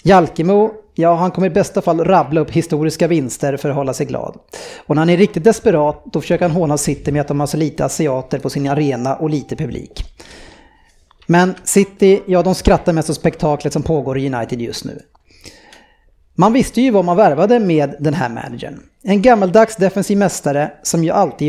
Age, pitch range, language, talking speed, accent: 30-49, 150-200 Hz, Swedish, 200 wpm, Norwegian